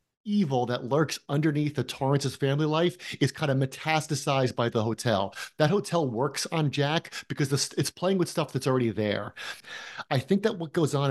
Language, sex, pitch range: English, male, 125-155 Hz